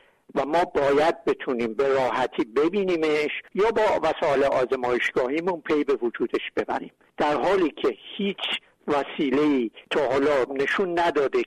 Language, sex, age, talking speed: Persian, male, 60-79, 120 wpm